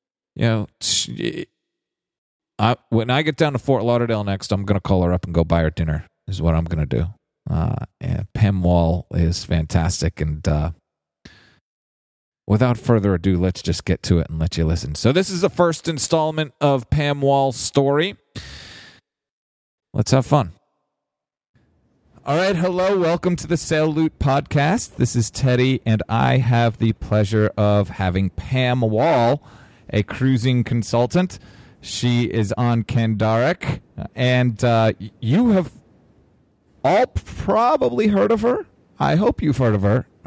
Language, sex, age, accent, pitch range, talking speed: English, male, 40-59, American, 100-135 Hz, 155 wpm